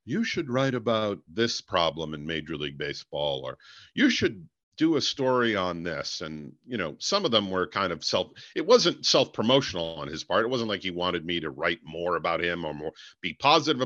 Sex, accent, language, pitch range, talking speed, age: male, American, English, 80-115 Hz, 215 wpm, 50-69